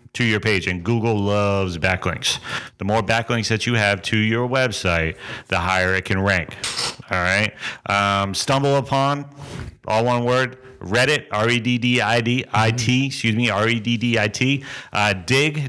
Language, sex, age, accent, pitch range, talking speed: English, male, 40-59, American, 105-130 Hz, 160 wpm